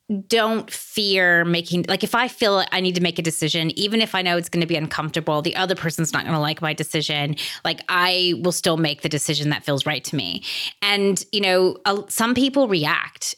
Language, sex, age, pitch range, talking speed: English, female, 30-49, 165-195 Hz, 225 wpm